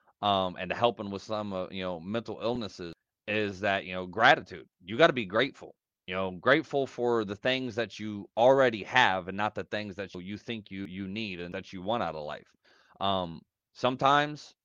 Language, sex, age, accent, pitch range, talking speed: English, male, 30-49, American, 100-135 Hz, 205 wpm